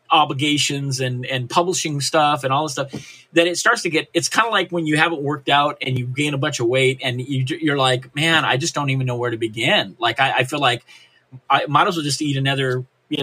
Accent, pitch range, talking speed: American, 130-160 Hz, 260 wpm